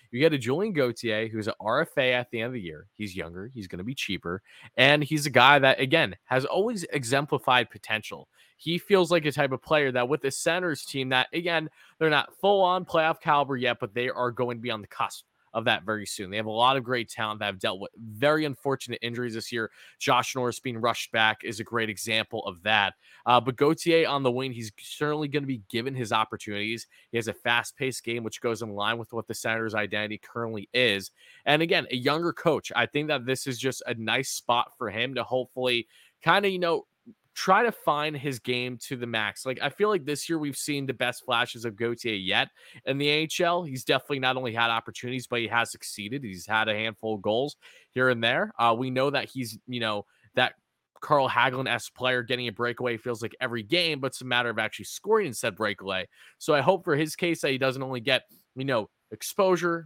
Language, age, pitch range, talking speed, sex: English, 20-39, 115-145 Hz, 230 wpm, male